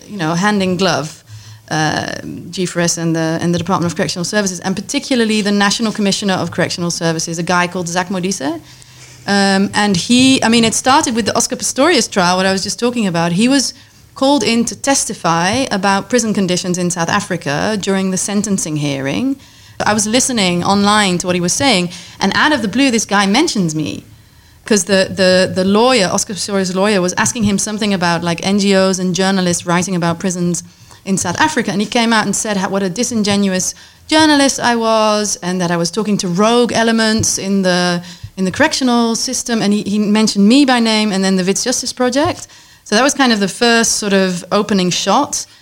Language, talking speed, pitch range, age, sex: French, 200 wpm, 180-225 Hz, 30-49, female